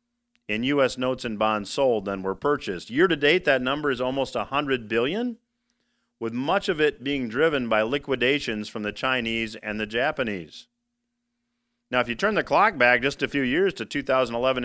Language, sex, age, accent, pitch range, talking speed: English, male, 40-59, American, 120-200 Hz, 170 wpm